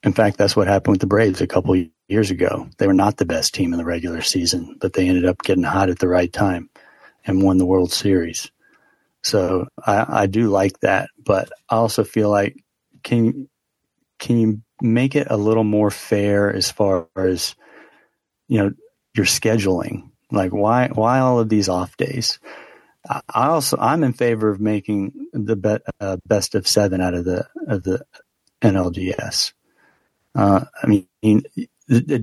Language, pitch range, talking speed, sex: English, 95-110 Hz, 175 wpm, male